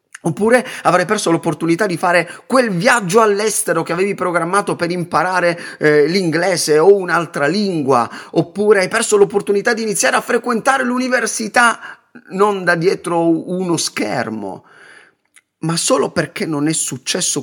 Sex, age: male, 30-49